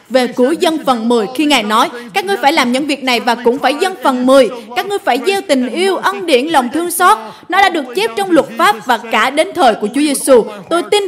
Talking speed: 260 wpm